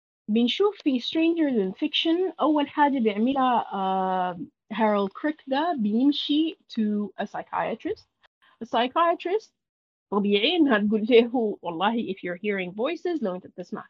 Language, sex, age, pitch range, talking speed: Arabic, female, 30-49, 205-285 Hz, 120 wpm